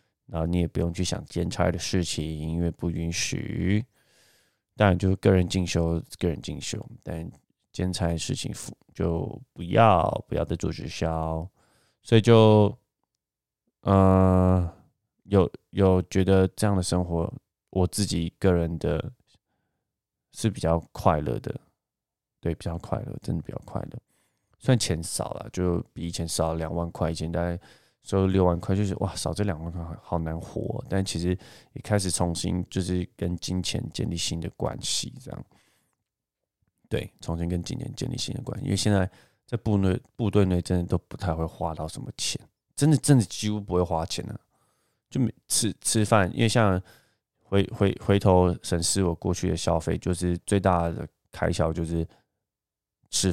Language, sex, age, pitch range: Chinese, male, 20-39, 85-105 Hz